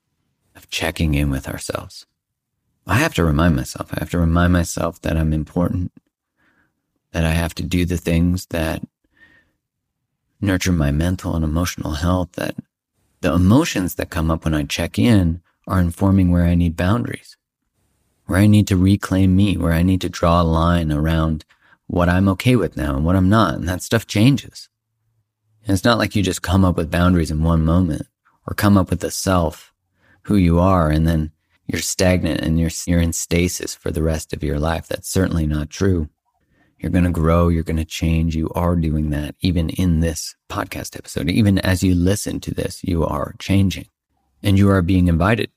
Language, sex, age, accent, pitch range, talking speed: English, male, 40-59, American, 80-95 Hz, 190 wpm